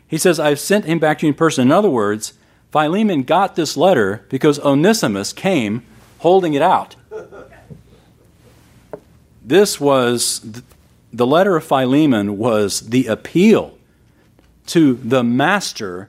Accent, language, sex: American, English, male